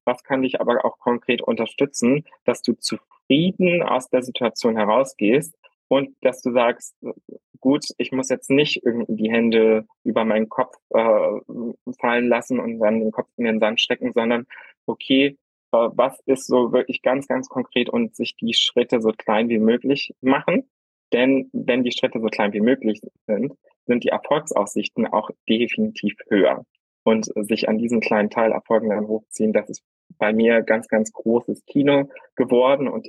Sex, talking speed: male, 170 wpm